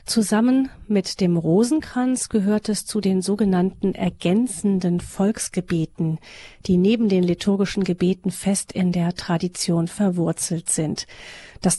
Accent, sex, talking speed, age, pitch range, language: German, female, 115 wpm, 40-59, 175-210 Hz, German